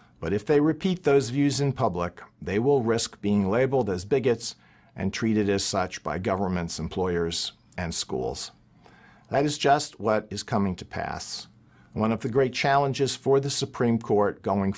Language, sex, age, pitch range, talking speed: English, male, 50-69, 95-130 Hz, 170 wpm